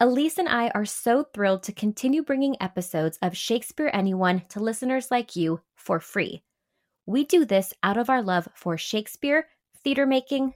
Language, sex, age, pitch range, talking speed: English, female, 20-39, 190-270 Hz, 165 wpm